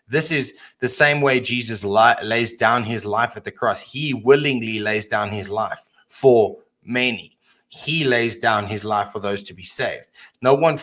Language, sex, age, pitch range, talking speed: English, male, 20-39, 110-130 Hz, 190 wpm